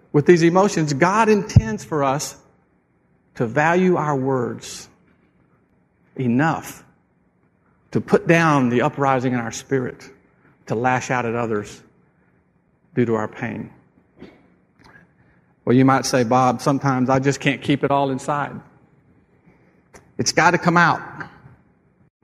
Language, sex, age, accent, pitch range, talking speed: English, male, 50-69, American, 125-155 Hz, 125 wpm